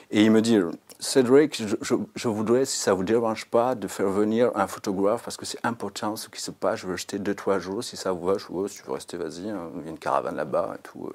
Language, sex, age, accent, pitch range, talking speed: French, male, 40-59, French, 95-115 Hz, 290 wpm